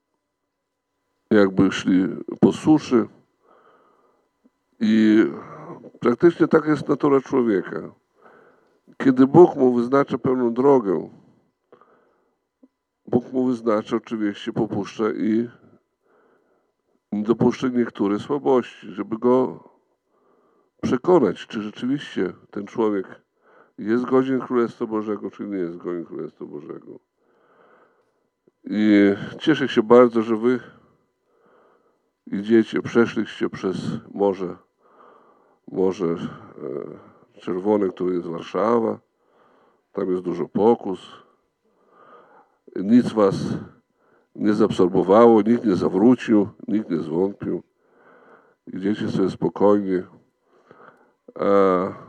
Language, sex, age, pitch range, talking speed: Polish, male, 50-69, 100-130 Hz, 90 wpm